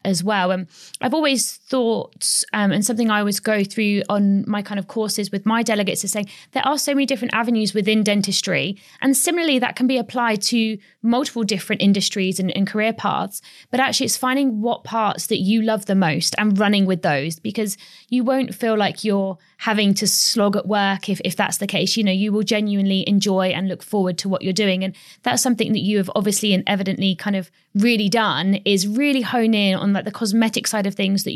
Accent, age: British, 20-39